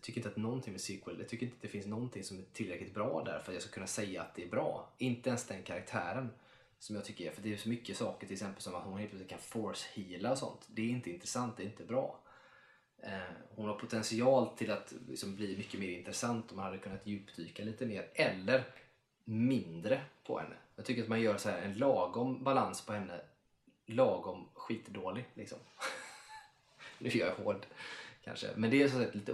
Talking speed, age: 220 wpm, 20-39